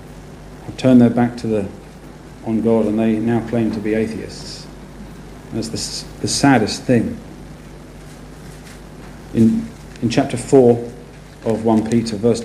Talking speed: 130 wpm